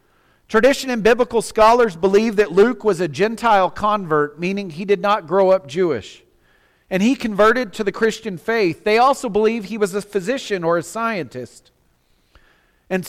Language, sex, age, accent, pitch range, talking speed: English, male, 40-59, American, 180-225 Hz, 165 wpm